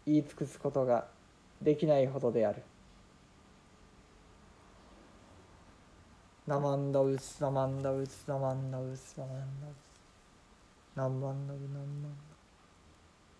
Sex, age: male, 50-69